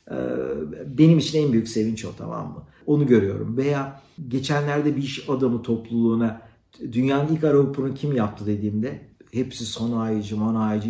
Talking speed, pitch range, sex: 145 wpm, 115-155 Hz, male